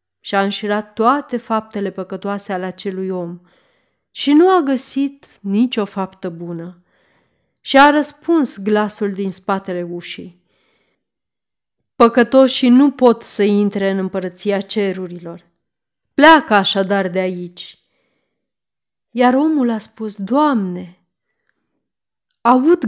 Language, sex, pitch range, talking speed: Romanian, female, 195-260 Hz, 110 wpm